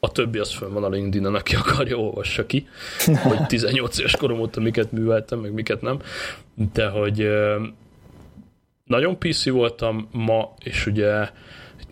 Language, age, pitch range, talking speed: Hungarian, 20-39, 100-120 Hz, 150 wpm